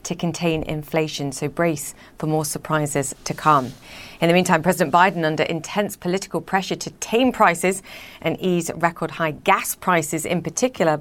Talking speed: 165 wpm